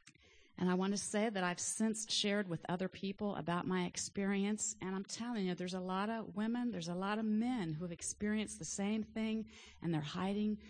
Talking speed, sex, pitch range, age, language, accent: 215 wpm, female, 170-210 Hz, 40-59, English, American